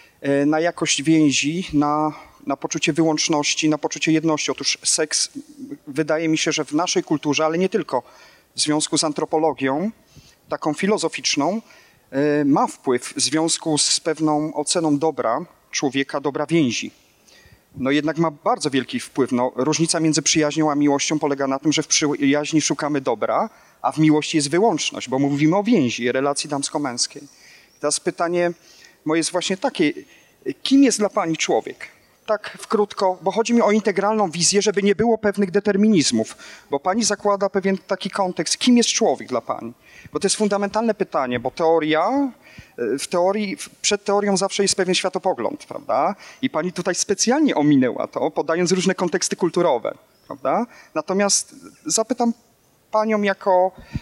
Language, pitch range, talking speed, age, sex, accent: Polish, 150-205 Hz, 150 wpm, 40-59, male, native